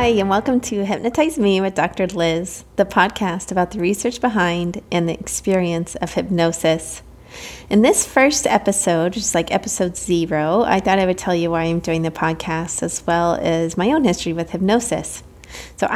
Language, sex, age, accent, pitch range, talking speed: English, female, 30-49, American, 165-205 Hz, 180 wpm